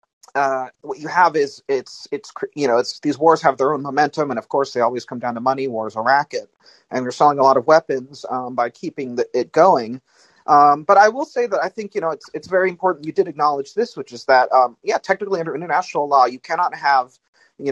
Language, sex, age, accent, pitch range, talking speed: English, male, 30-49, American, 130-195 Hz, 245 wpm